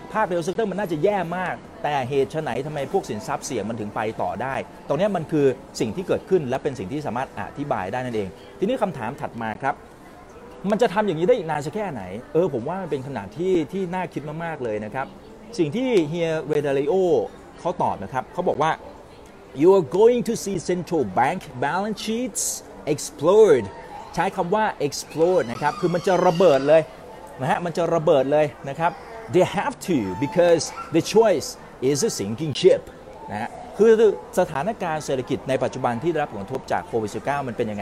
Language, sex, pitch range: Thai, male, 135-190 Hz